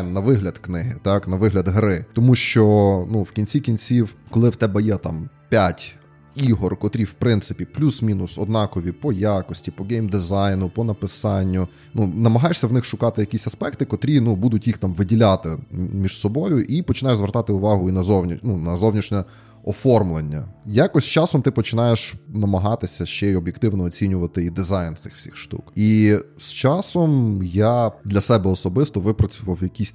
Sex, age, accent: male, 20-39, native